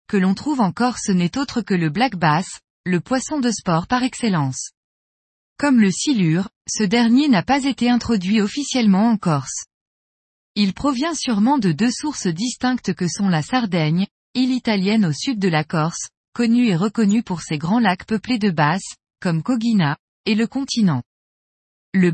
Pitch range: 180-245 Hz